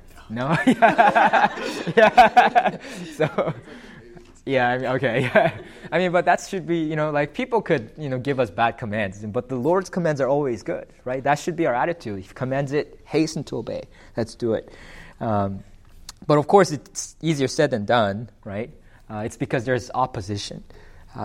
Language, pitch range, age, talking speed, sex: English, 100-130 Hz, 20-39, 180 wpm, male